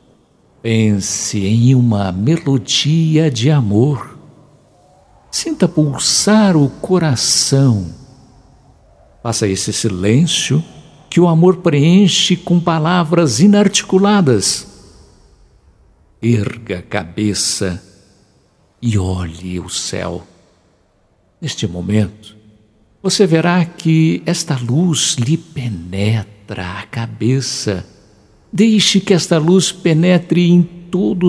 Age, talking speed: 60-79, 85 wpm